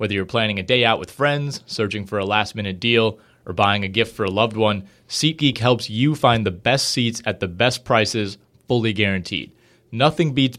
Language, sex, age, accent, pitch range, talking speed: English, male, 30-49, American, 100-125 Hz, 205 wpm